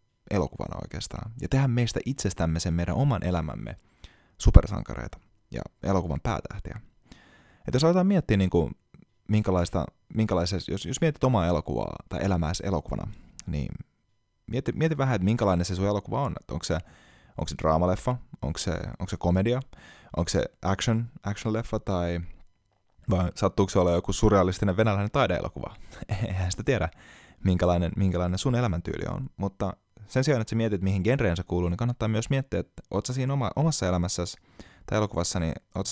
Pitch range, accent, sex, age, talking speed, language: 90-115 Hz, native, male, 20-39, 150 wpm, Finnish